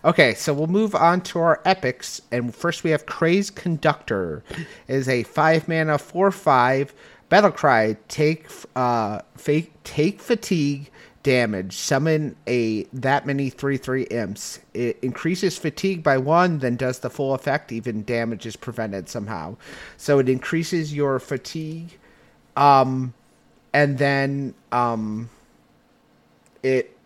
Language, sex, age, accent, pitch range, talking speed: English, male, 30-49, American, 120-150 Hz, 135 wpm